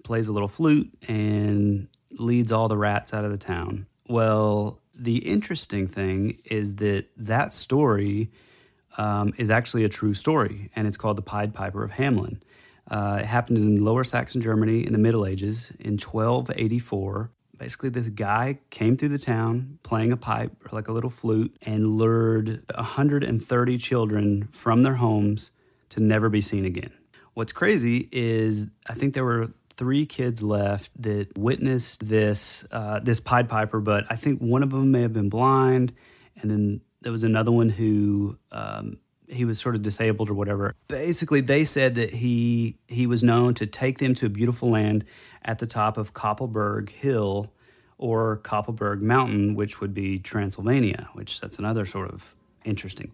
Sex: male